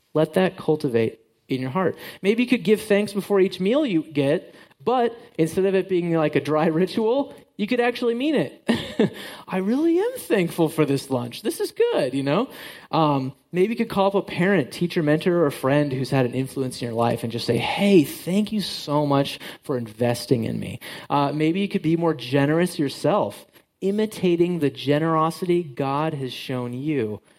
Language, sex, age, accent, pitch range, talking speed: English, male, 30-49, American, 140-200 Hz, 195 wpm